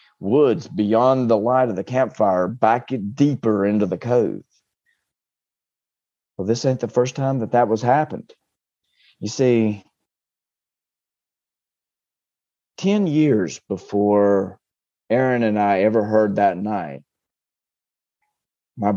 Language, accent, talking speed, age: English, American, 110 wpm, 30-49